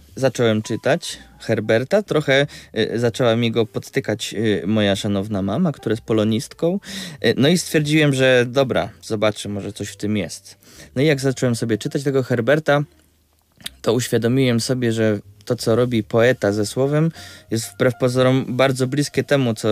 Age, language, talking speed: 20-39, Polish, 150 wpm